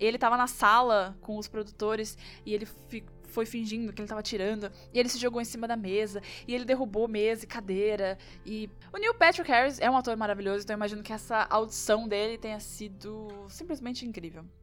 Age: 10-29